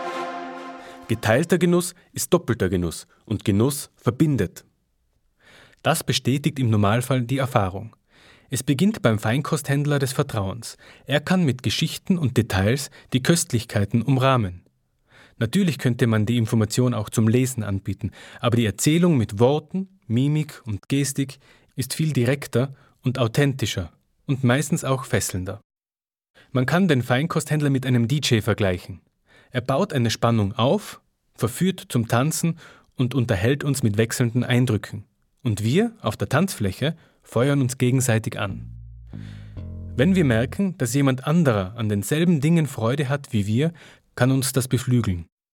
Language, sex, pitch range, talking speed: German, male, 110-145 Hz, 135 wpm